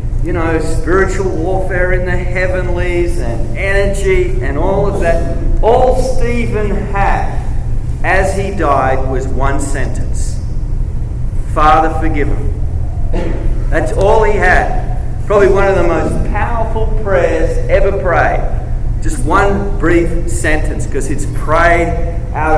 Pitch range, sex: 110-145 Hz, male